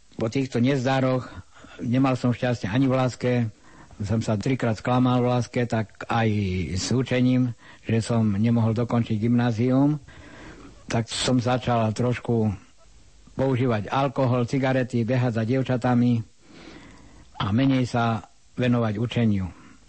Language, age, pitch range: Slovak, 60-79, 115-130 Hz